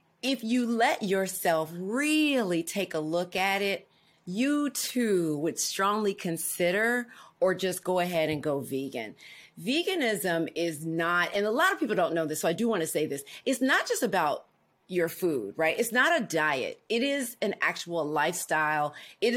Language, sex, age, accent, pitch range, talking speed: English, female, 40-59, American, 160-215 Hz, 175 wpm